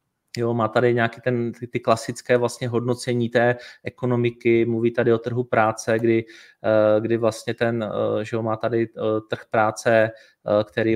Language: Czech